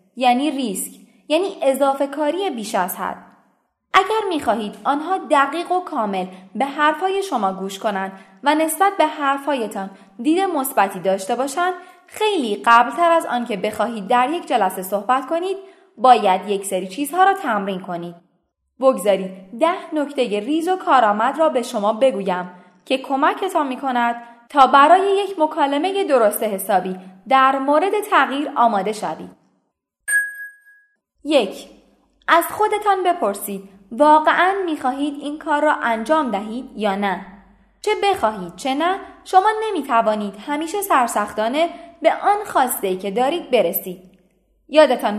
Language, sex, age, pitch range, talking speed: Persian, female, 20-39, 205-340 Hz, 130 wpm